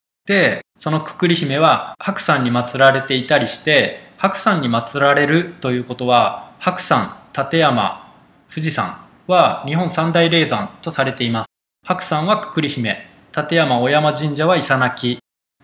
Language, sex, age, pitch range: Japanese, male, 20-39, 125-160 Hz